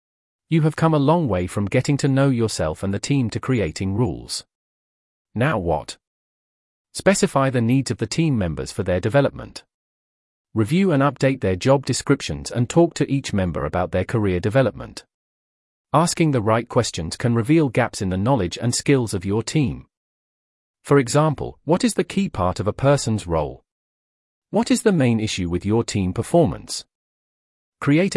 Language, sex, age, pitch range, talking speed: English, male, 40-59, 90-140 Hz, 170 wpm